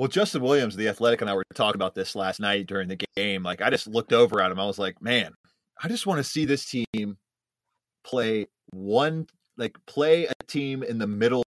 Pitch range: 100-140 Hz